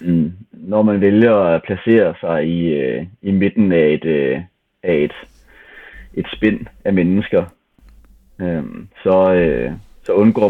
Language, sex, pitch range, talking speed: Danish, male, 90-110 Hz, 135 wpm